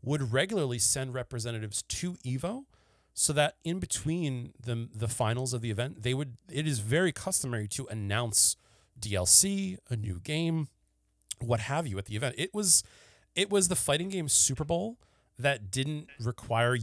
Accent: American